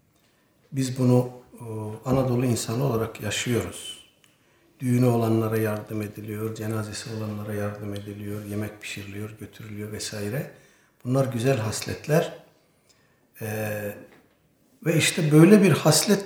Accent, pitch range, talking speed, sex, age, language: native, 110-150 Hz, 100 wpm, male, 60-79, Turkish